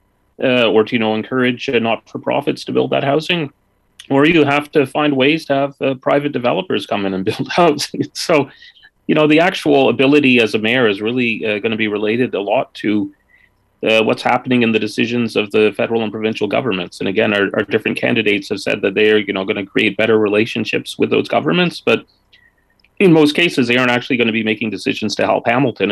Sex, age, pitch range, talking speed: male, 30-49, 100-125 Hz, 215 wpm